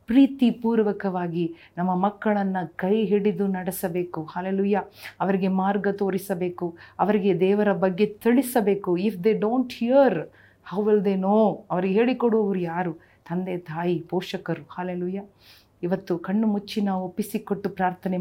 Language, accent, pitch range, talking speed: Kannada, native, 180-215 Hz, 115 wpm